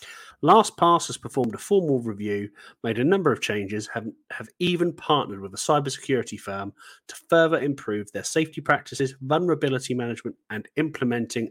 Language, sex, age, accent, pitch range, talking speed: English, male, 40-59, British, 110-150 Hz, 150 wpm